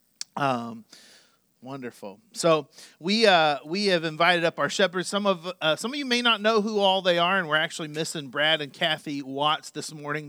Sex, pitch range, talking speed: male, 140-175 Hz, 200 wpm